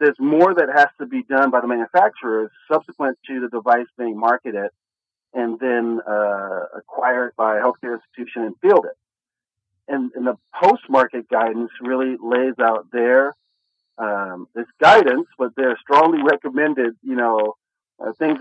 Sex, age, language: male, 40-59, English